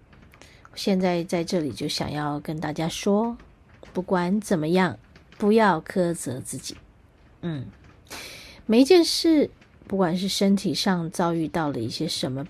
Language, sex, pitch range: Chinese, female, 150-205 Hz